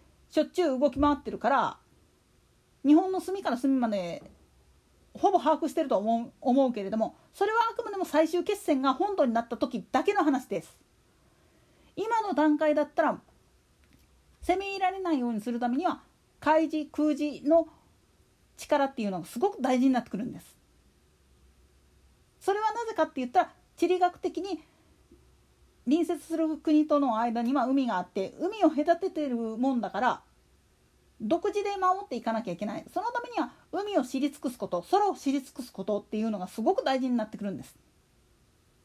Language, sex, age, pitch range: Japanese, female, 40-59, 230-345 Hz